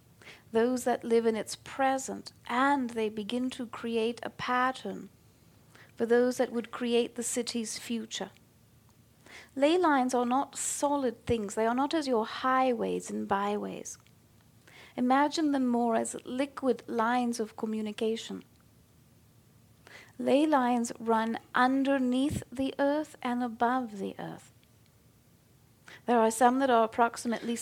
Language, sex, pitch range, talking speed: English, female, 215-255 Hz, 130 wpm